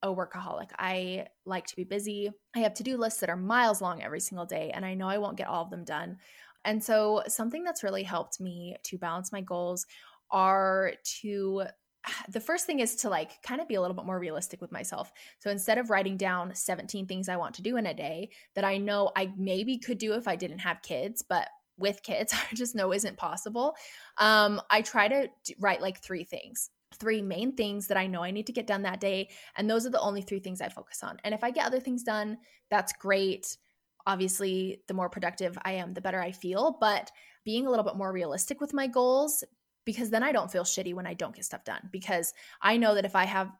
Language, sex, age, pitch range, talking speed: English, female, 20-39, 185-215 Hz, 235 wpm